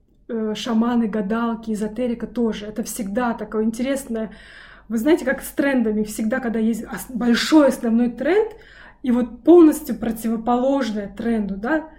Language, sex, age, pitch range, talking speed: Russian, female, 20-39, 220-255 Hz, 125 wpm